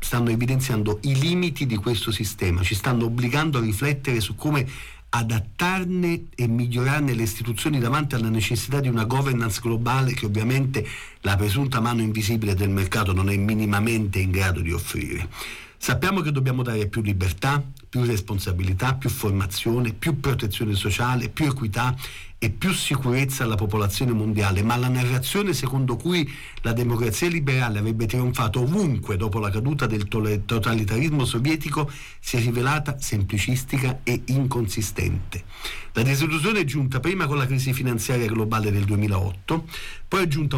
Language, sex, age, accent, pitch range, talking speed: Italian, male, 50-69, native, 105-135 Hz, 145 wpm